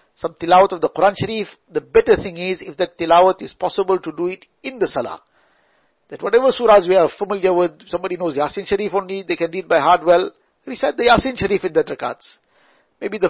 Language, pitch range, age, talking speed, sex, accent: English, 175-215 Hz, 60-79, 215 wpm, male, Indian